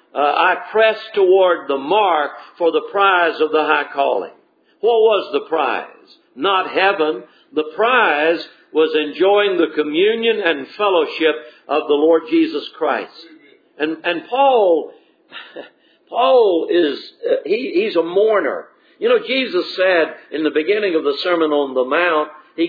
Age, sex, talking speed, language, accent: 60-79, male, 150 wpm, English, American